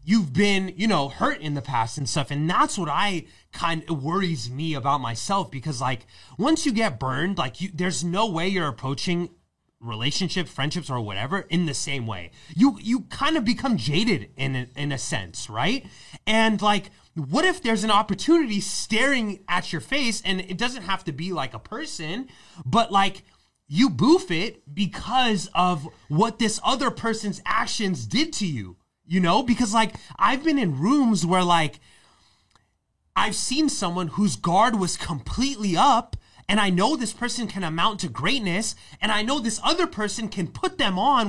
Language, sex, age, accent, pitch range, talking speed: English, male, 30-49, American, 160-225 Hz, 180 wpm